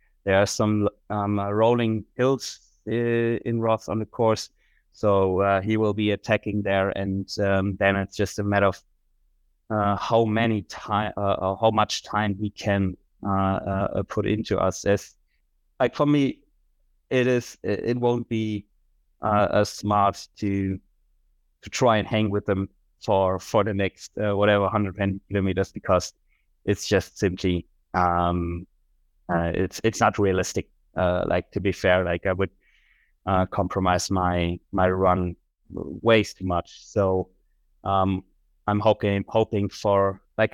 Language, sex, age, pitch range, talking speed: English, male, 20-39, 95-105 Hz, 155 wpm